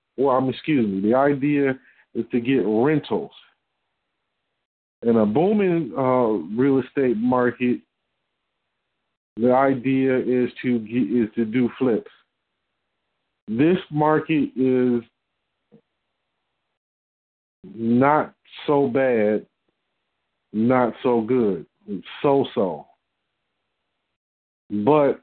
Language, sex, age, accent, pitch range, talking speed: English, male, 40-59, American, 125-145 Hz, 90 wpm